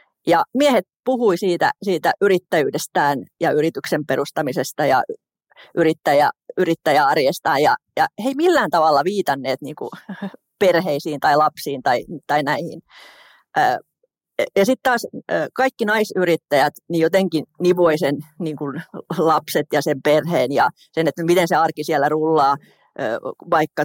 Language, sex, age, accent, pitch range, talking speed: Finnish, female, 30-49, native, 155-195 Hz, 120 wpm